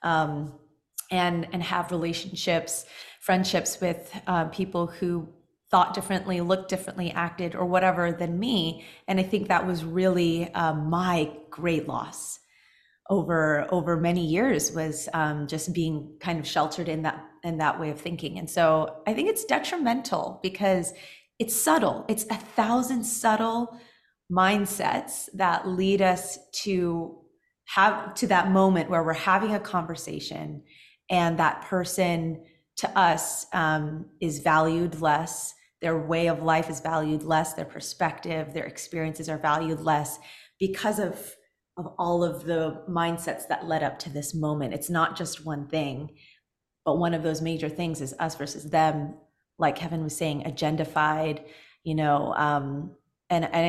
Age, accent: 30-49, American